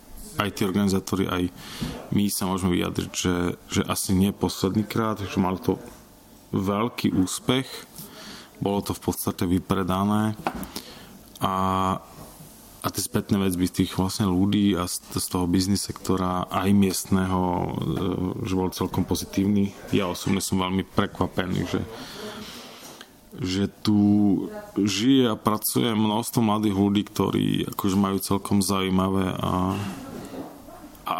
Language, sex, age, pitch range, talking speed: Slovak, male, 20-39, 90-105 Hz, 125 wpm